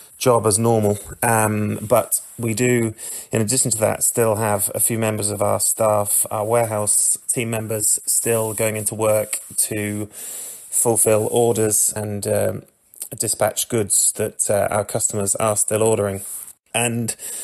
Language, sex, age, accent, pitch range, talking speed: English, male, 30-49, British, 105-115 Hz, 145 wpm